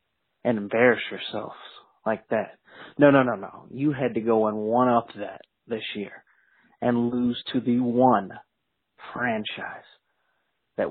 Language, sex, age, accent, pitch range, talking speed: English, male, 40-59, American, 115-140 Hz, 140 wpm